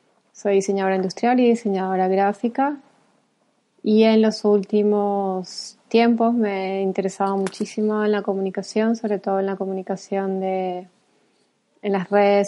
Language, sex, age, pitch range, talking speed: Spanish, female, 20-39, 195-220 Hz, 130 wpm